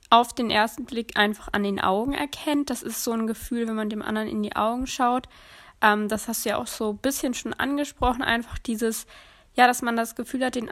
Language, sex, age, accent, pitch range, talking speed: German, female, 10-29, German, 210-240 Hz, 235 wpm